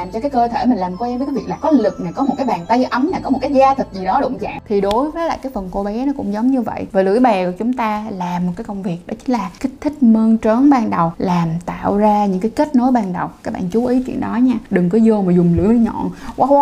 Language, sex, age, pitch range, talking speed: Vietnamese, female, 10-29, 195-260 Hz, 320 wpm